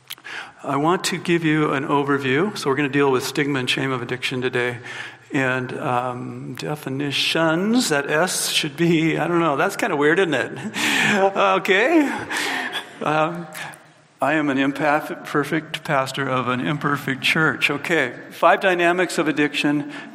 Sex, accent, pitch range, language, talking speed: male, American, 130-180 Hz, English, 150 wpm